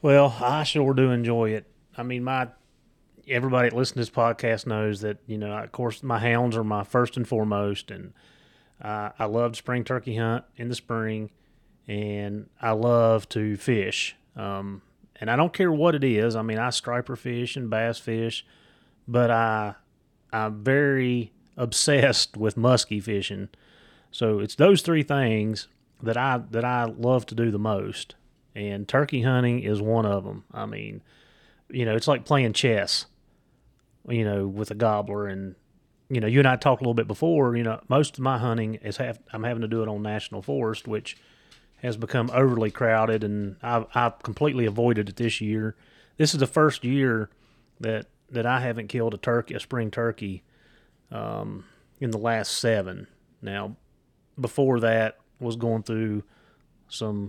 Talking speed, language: 175 wpm, English